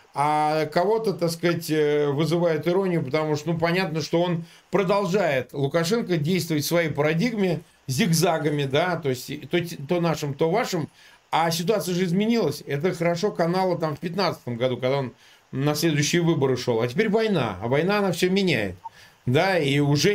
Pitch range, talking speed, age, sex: 145-190 Hz, 160 wpm, 40-59, male